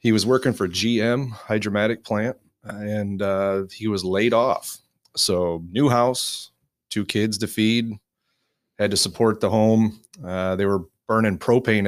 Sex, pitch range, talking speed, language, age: male, 95-110 Hz, 150 wpm, English, 30-49